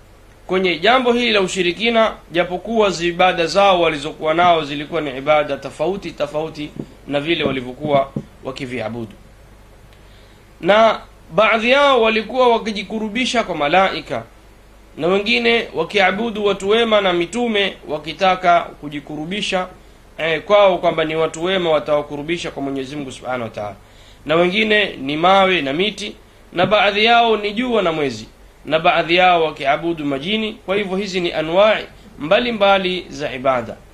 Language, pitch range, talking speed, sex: Swahili, 140-195 Hz, 130 wpm, male